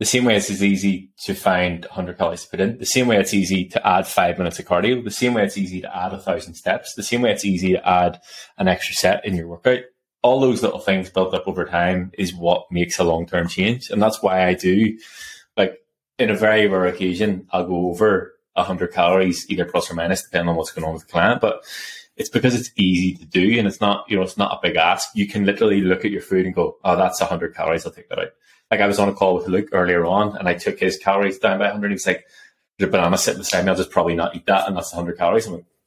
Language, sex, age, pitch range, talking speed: English, male, 20-39, 90-105 Hz, 270 wpm